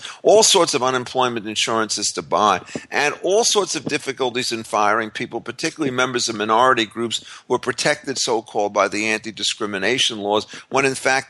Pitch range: 120-180 Hz